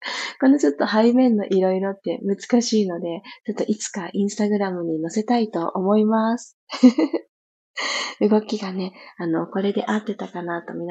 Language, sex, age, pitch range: Japanese, female, 20-39, 190-255 Hz